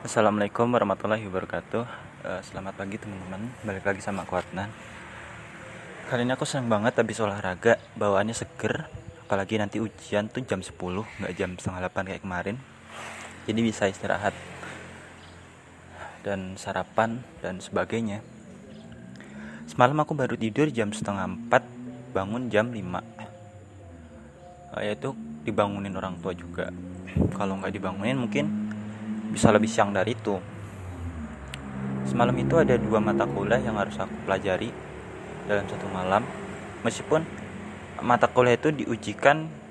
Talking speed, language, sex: 120 wpm, Indonesian, male